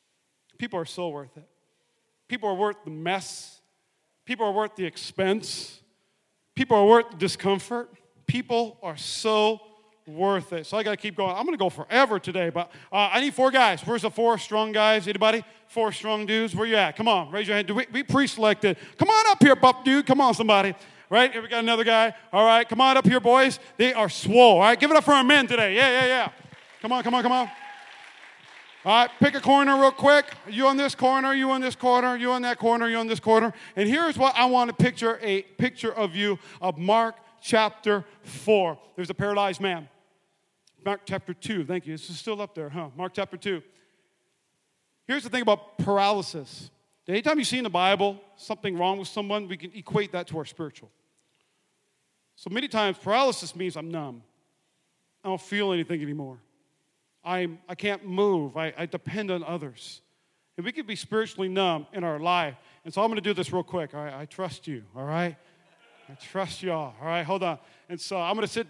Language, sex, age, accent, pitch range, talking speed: English, male, 40-59, American, 180-230 Hz, 210 wpm